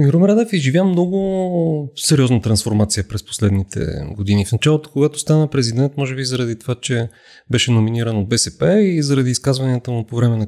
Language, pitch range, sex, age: Bulgarian, 120-150 Hz, male, 30-49